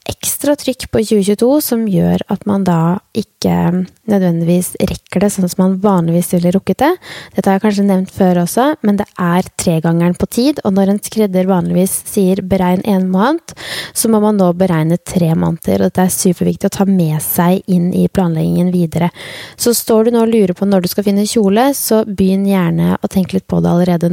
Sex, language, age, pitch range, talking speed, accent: female, English, 20-39, 180-220 Hz, 205 wpm, Norwegian